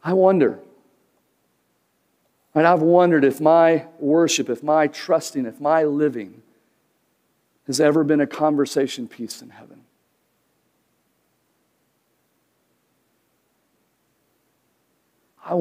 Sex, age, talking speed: male, 50-69, 90 wpm